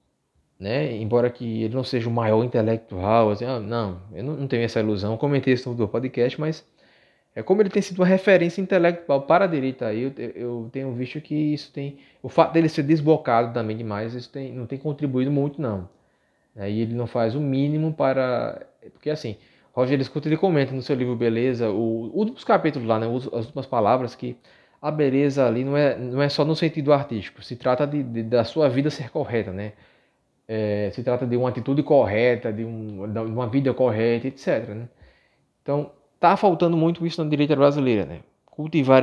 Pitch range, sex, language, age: 115-145 Hz, male, Portuguese, 20-39